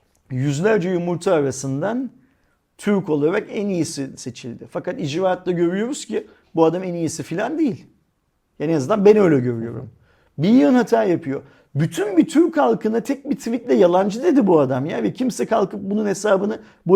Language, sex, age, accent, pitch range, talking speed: Turkish, male, 50-69, native, 165-235 Hz, 165 wpm